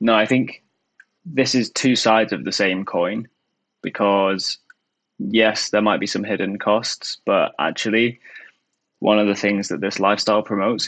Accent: British